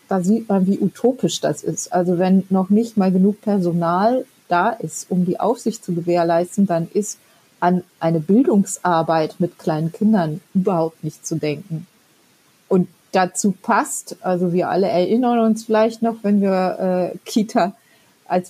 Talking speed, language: 155 wpm, German